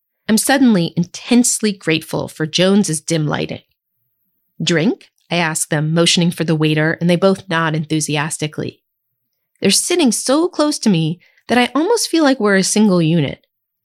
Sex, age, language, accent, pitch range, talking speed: female, 30-49, English, American, 155-215 Hz, 155 wpm